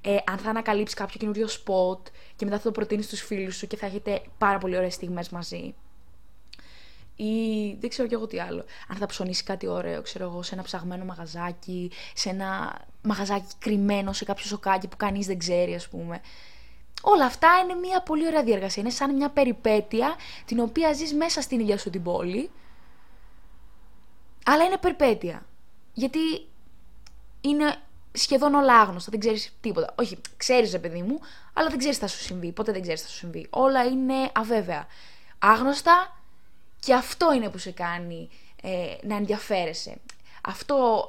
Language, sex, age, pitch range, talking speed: Greek, female, 20-39, 185-260 Hz, 170 wpm